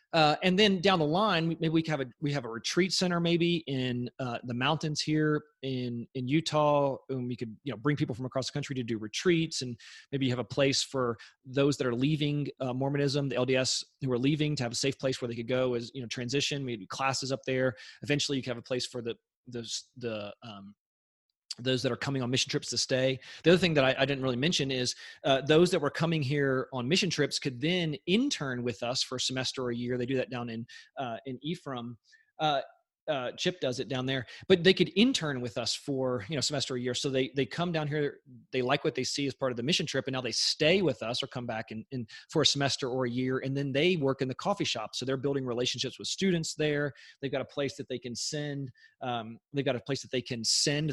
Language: English